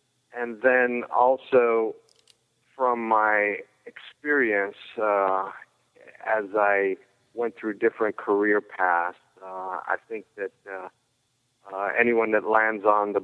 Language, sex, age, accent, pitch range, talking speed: English, male, 40-59, American, 95-110 Hz, 115 wpm